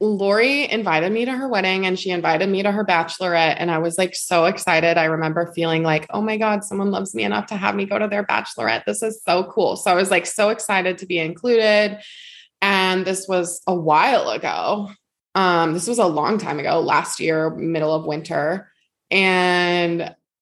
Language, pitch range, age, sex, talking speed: English, 160-195 Hz, 20-39, female, 205 wpm